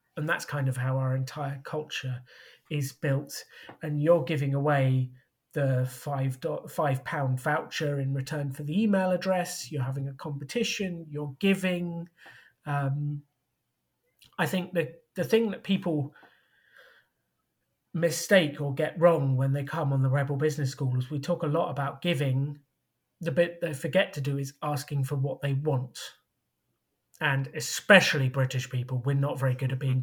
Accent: British